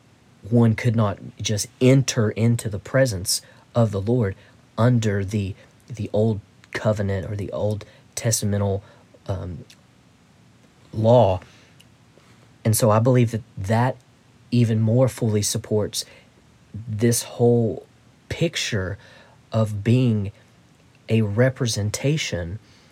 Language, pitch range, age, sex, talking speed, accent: English, 105-125 Hz, 40-59, male, 100 wpm, American